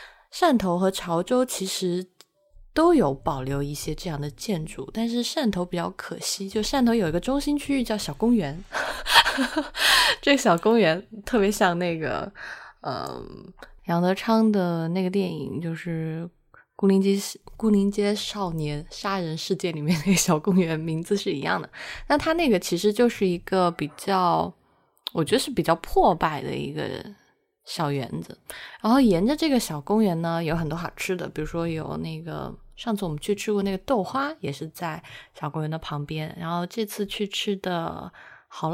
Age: 20-39